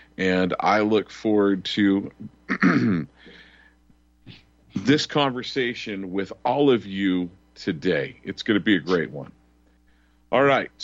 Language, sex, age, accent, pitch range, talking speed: English, male, 50-69, American, 95-125 Hz, 115 wpm